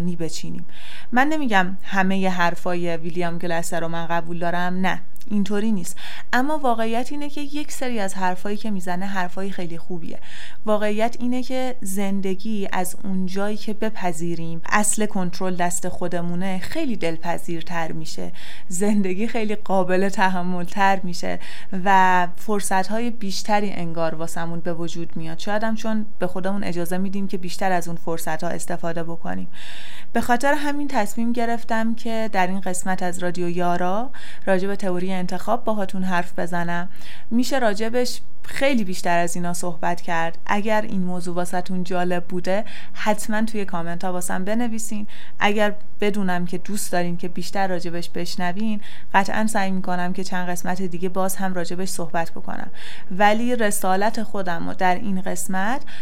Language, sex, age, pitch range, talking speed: Persian, female, 30-49, 175-215 Hz, 150 wpm